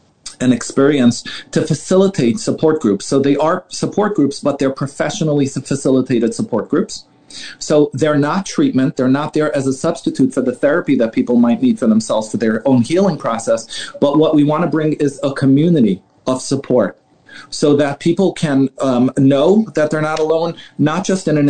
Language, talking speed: English, 185 wpm